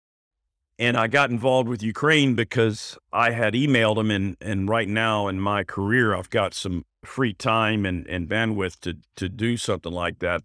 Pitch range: 90-110 Hz